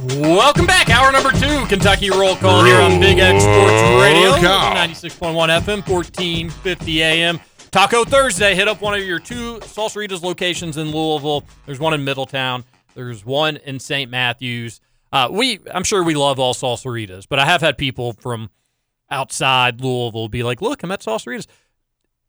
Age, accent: 40-59, American